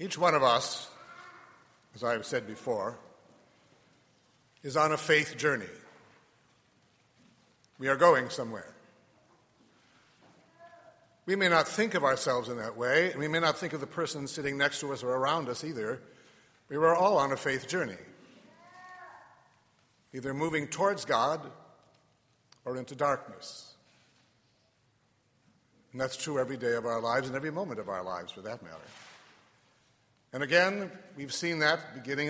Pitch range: 125-170 Hz